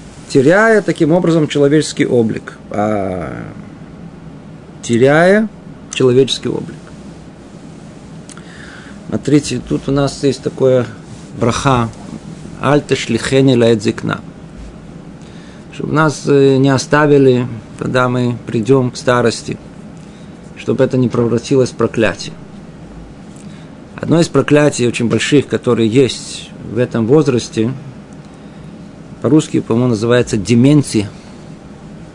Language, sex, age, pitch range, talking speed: Russian, male, 50-69, 120-155 Hz, 90 wpm